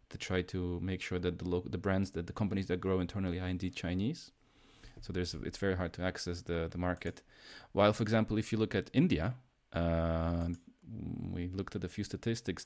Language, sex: English, male